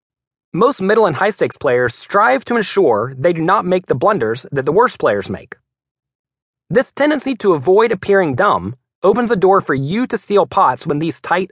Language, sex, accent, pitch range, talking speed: English, male, American, 135-210 Hz, 190 wpm